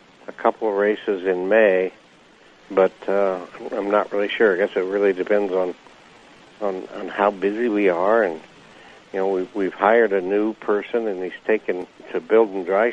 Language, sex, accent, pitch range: English, male, American, 95-115 Hz